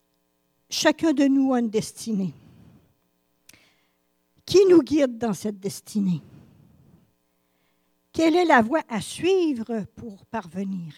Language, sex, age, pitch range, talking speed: French, female, 60-79, 180-275 Hz, 110 wpm